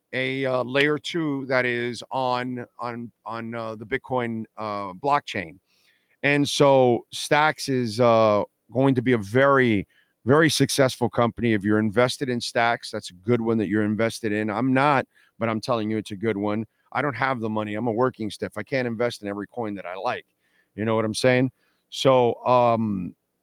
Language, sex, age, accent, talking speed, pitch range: English, male, 40-59, American, 190 wpm, 110-135 Hz